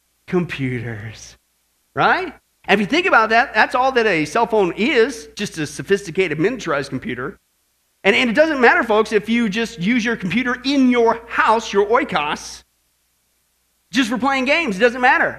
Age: 40-59